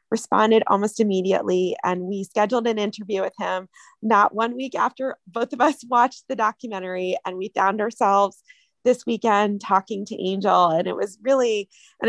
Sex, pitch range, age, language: female, 195-235 Hz, 20-39, English